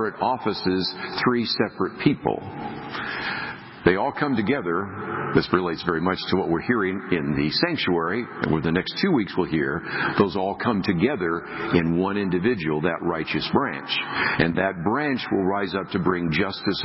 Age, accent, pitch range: 60-79, American, 90-110 Hz